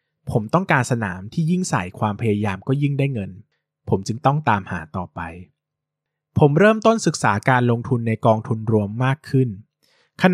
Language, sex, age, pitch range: Thai, male, 20-39, 105-150 Hz